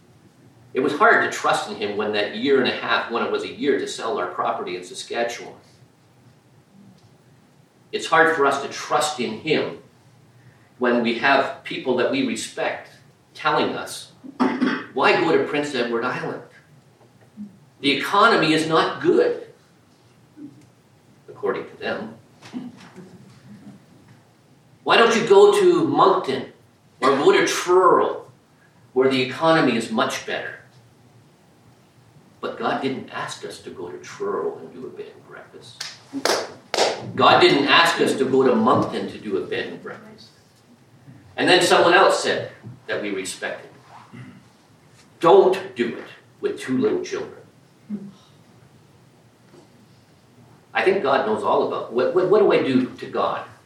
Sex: male